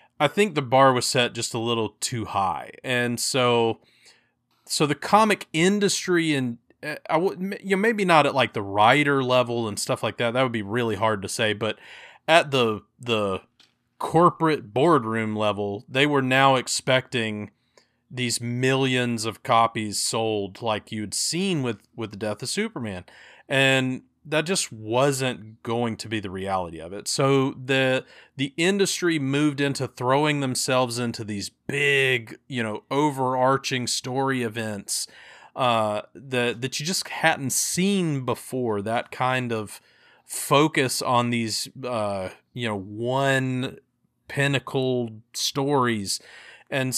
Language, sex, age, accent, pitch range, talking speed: English, male, 30-49, American, 110-140 Hz, 145 wpm